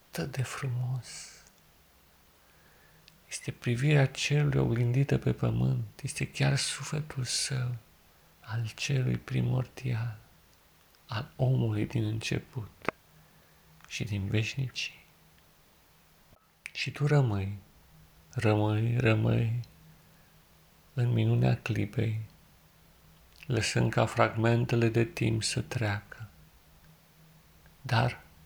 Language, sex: Romanian, male